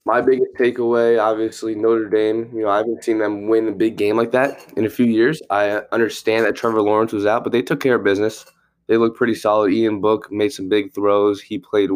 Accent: American